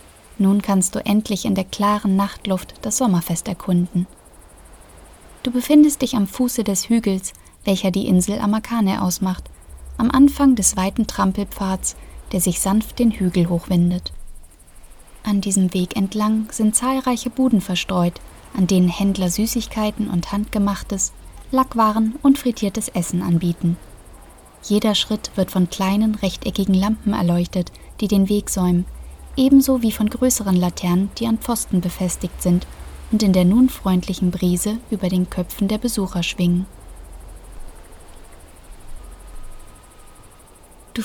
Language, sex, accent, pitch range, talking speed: English, female, German, 180-220 Hz, 130 wpm